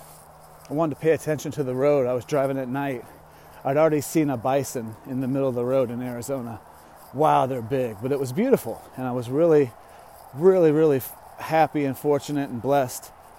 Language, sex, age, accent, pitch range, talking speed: English, male, 30-49, American, 120-145 Hz, 195 wpm